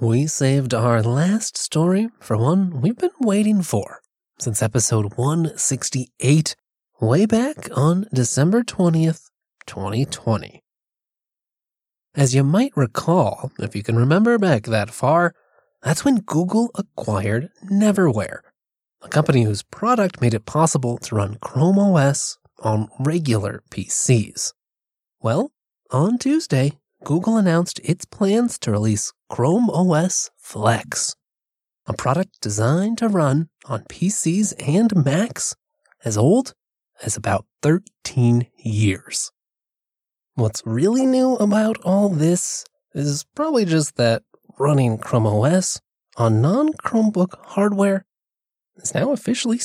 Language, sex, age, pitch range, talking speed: English, male, 20-39, 120-200 Hz, 115 wpm